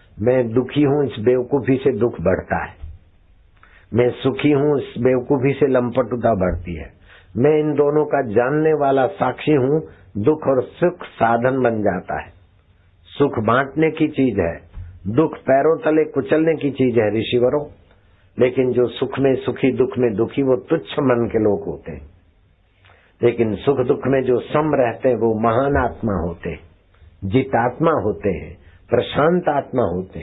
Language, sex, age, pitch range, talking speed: Hindi, male, 60-79, 95-130 Hz, 155 wpm